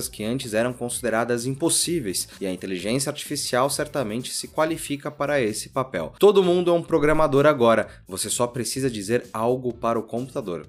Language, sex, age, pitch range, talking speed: Portuguese, male, 20-39, 120-155 Hz, 165 wpm